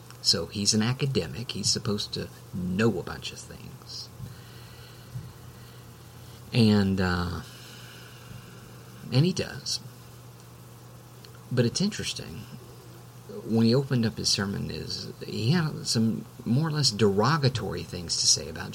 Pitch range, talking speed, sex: 105-130 Hz, 120 wpm, male